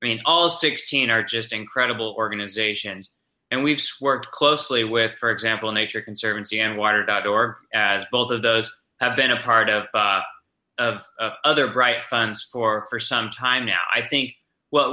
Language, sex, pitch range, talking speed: English, male, 115-135 Hz, 170 wpm